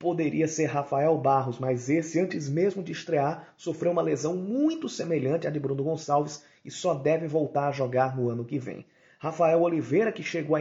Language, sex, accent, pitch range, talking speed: Portuguese, male, Brazilian, 135-175 Hz, 190 wpm